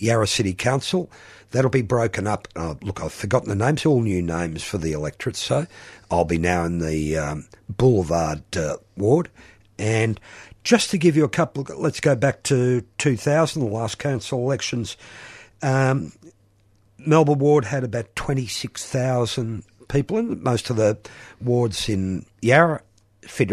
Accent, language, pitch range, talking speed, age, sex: Australian, English, 90-130 Hz, 155 wpm, 50-69, male